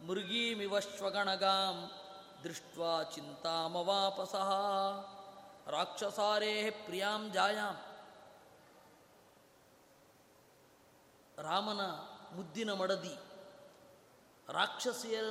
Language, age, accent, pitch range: Kannada, 20-39, native, 190-210 Hz